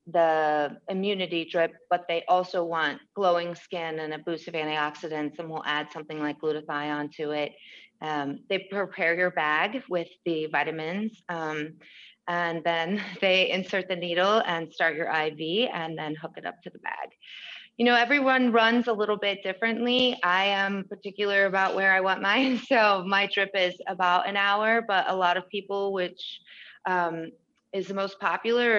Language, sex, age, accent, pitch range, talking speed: English, female, 30-49, American, 170-200 Hz, 170 wpm